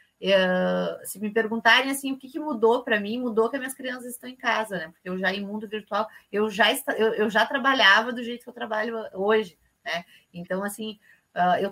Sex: female